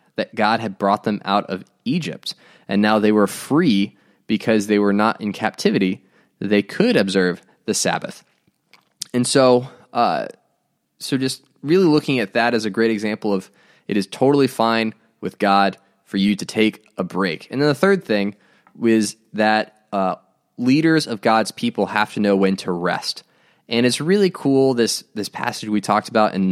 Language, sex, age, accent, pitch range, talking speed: English, male, 20-39, American, 100-120 Hz, 180 wpm